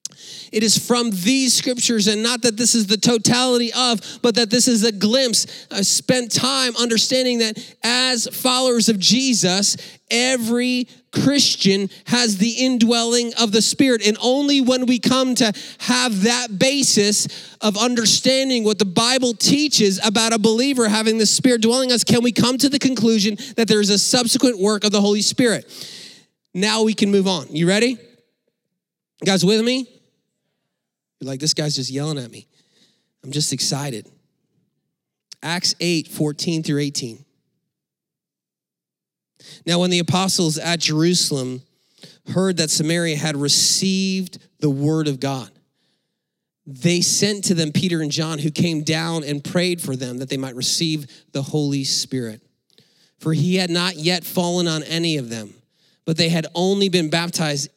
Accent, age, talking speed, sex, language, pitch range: American, 30-49, 160 wpm, male, English, 160-235 Hz